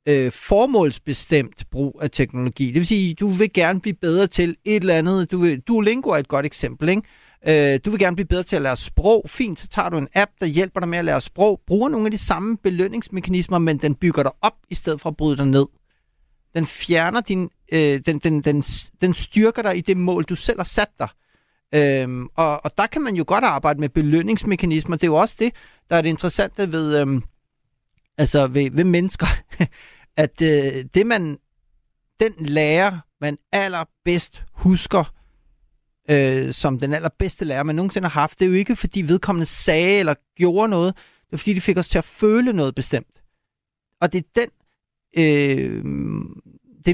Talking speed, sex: 195 wpm, male